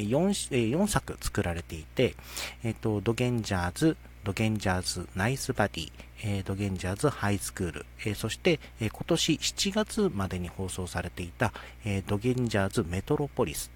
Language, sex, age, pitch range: Japanese, male, 40-59, 90-150 Hz